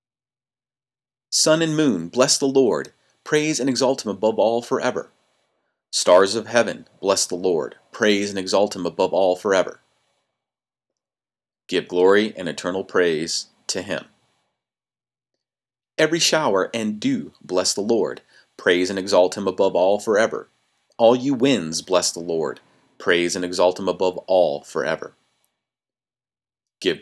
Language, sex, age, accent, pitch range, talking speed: English, male, 30-49, American, 100-145 Hz, 135 wpm